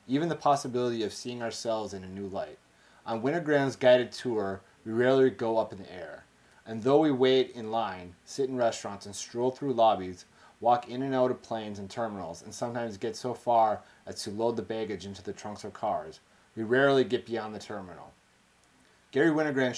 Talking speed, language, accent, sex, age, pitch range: 195 wpm, English, American, male, 30-49, 100-125 Hz